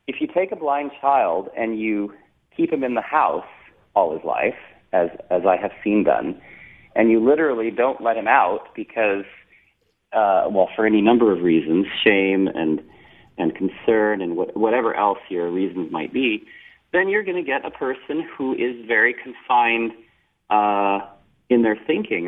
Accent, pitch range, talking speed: American, 105-135 Hz, 170 wpm